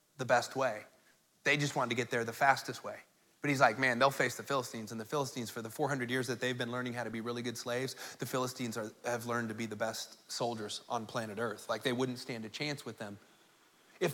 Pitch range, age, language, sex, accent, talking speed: 135-170 Hz, 30-49, English, male, American, 245 wpm